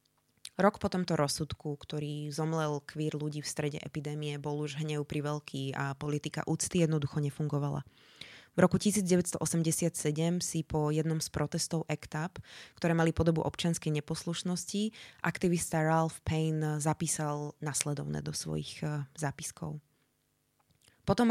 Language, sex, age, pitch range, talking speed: Slovak, female, 20-39, 145-165 Hz, 125 wpm